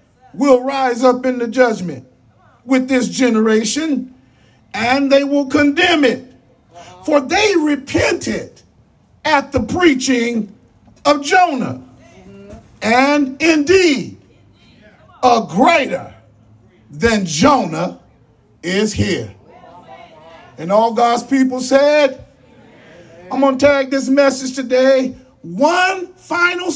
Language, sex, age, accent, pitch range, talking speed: English, male, 40-59, American, 205-300 Hz, 100 wpm